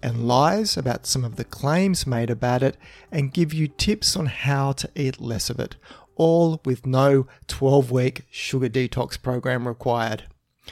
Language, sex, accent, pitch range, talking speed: English, male, Australian, 120-145 Hz, 170 wpm